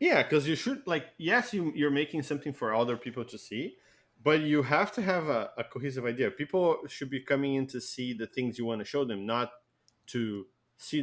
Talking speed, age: 225 wpm, 20-39